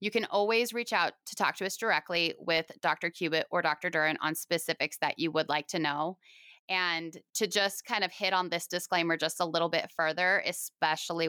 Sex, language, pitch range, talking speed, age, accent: female, English, 170-220 Hz, 205 wpm, 20-39, American